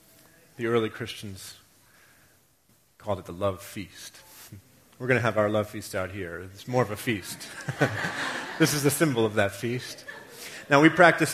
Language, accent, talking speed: English, American, 170 wpm